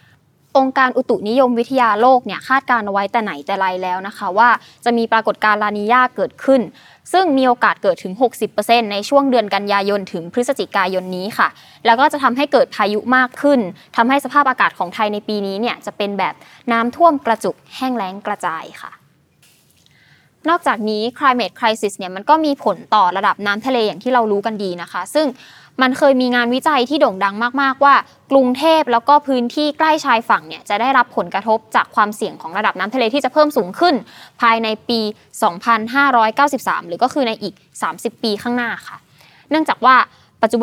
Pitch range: 205-260 Hz